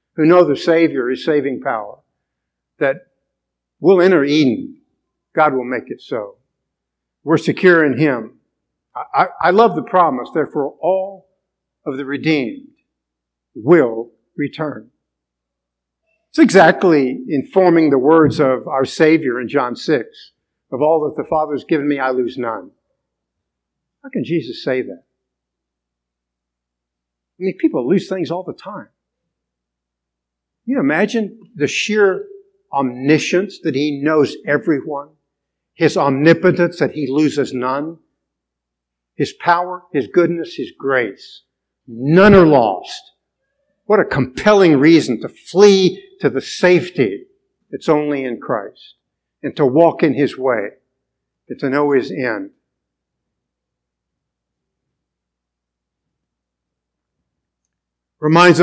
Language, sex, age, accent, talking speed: English, male, 50-69, American, 120 wpm